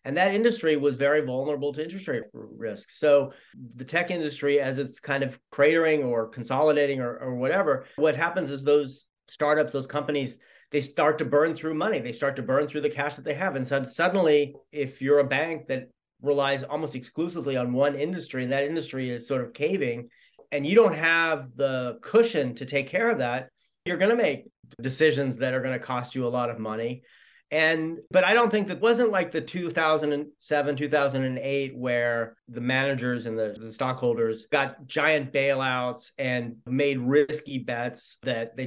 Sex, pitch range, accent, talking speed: male, 125-155 Hz, American, 190 wpm